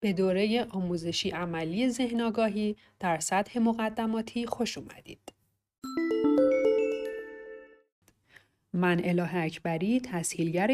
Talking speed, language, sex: 80 wpm, Persian, female